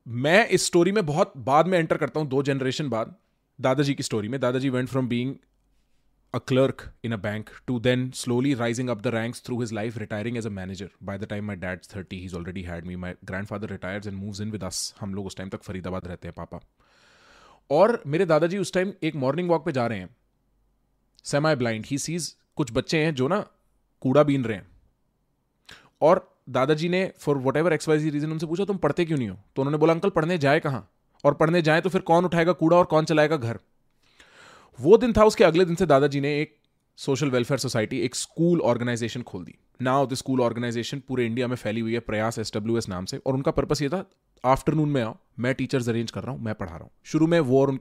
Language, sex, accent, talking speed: English, male, Indian, 145 wpm